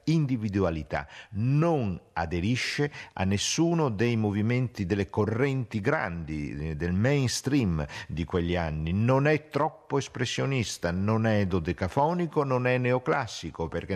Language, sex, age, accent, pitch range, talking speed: Italian, male, 50-69, native, 95-130 Hz, 110 wpm